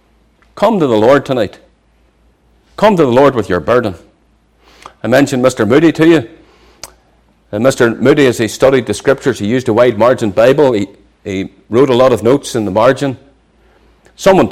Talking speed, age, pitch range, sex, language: 175 wpm, 40-59, 110-140 Hz, male, English